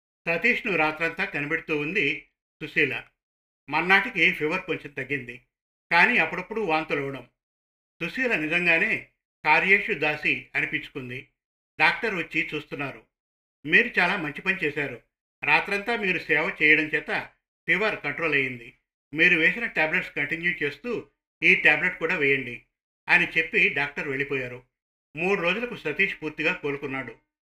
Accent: native